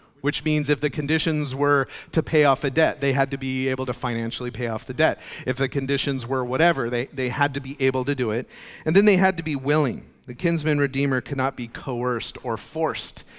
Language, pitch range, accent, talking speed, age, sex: English, 120-145 Hz, American, 235 wpm, 40-59, male